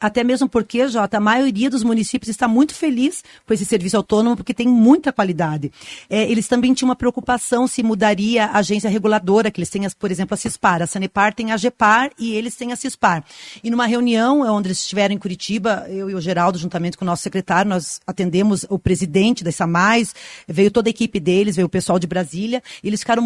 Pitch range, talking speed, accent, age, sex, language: 200-245 Hz, 210 wpm, Brazilian, 40-59, female, Portuguese